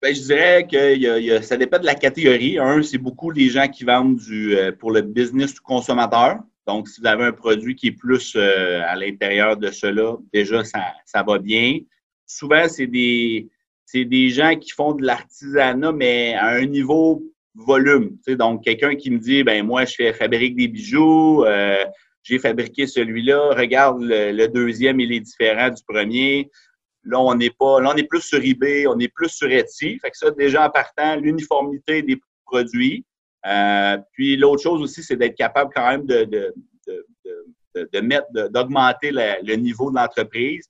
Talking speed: 200 wpm